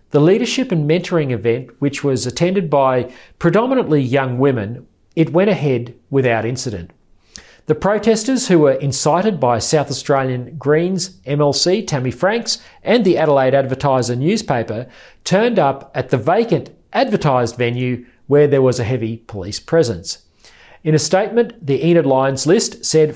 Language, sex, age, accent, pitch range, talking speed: English, male, 40-59, Australian, 130-180 Hz, 145 wpm